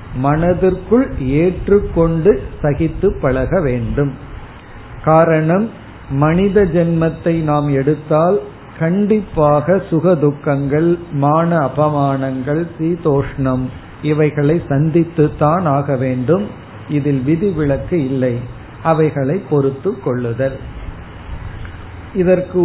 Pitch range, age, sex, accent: 135-170 Hz, 50-69, male, native